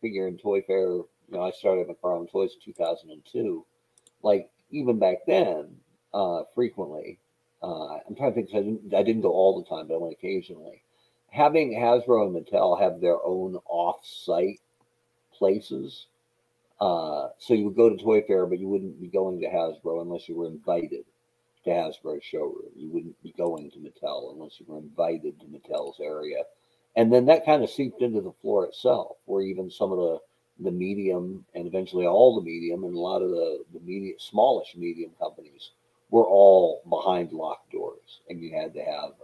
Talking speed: 185 wpm